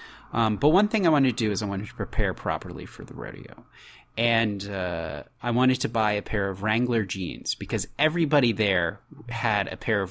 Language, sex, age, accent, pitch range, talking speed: English, male, 30-49, American, 100-125 Hz, 210 wpm